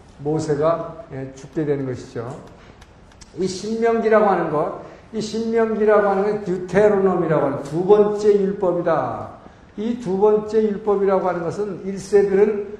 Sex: male